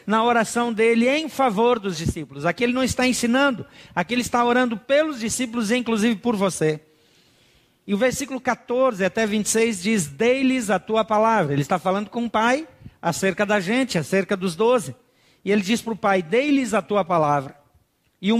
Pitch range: 175-235 Hz